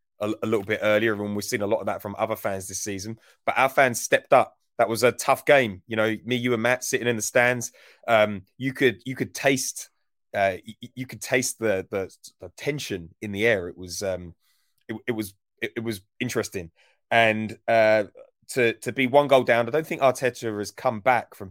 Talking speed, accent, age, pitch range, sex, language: 220 wpm, British, 30-49, 100-125 Hz, male, English